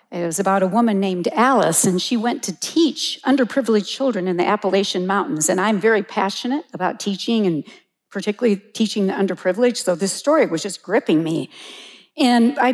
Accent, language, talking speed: American, English, 180 wpm